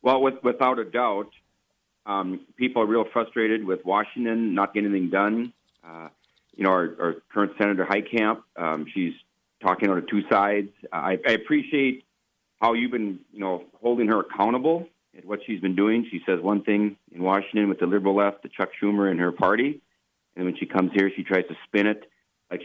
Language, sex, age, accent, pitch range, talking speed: English, male, 40-59, American, 95-115 Hz, 190 wpm